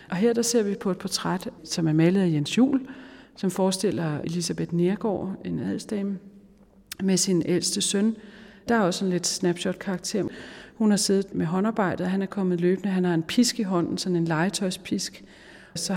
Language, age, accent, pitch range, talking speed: Danish, 40-59, native, 165-200 Hz, 185 wpm